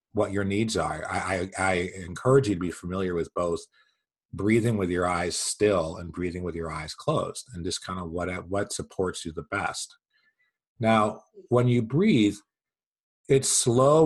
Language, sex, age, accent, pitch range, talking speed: English, male, 40-59, American, 90-110 Hz, 175 wpm